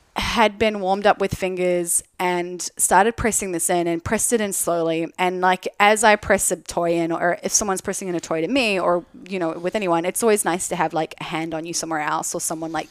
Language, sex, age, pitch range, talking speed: English, female, 20-39, 160-190 Hz, 245 wpm